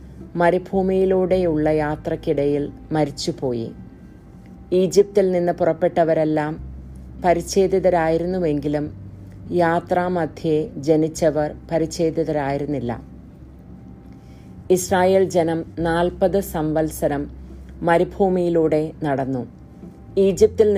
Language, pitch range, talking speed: English, 150-180 Hz, 70 wpm